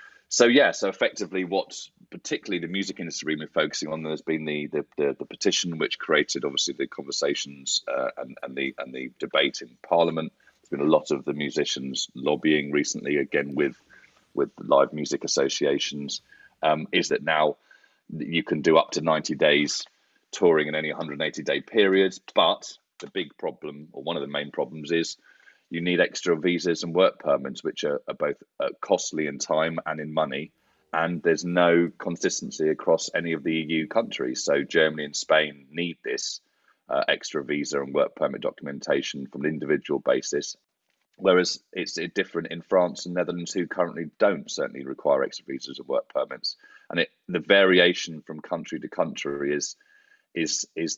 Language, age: English, 30-49